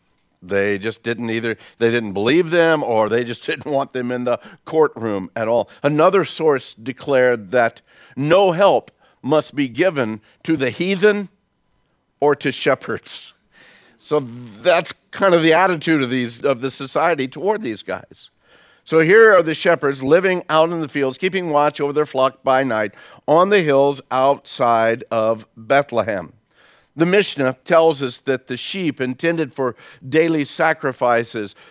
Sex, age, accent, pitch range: male, 50-69, American, 120-155 Hz